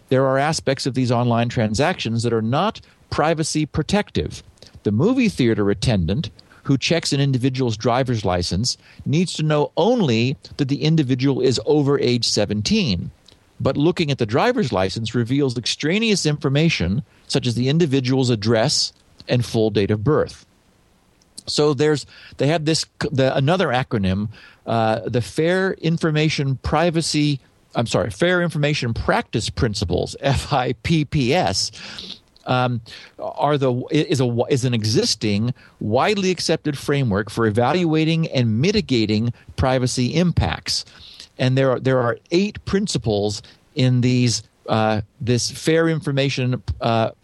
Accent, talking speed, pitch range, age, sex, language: American, 130 wpm, 115-155 Hz, 50-69, male, English